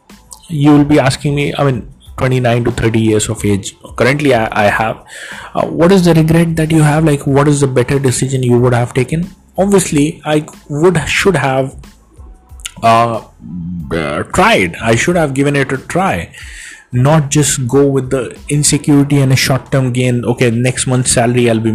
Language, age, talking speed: English, 30-49, 180 wpm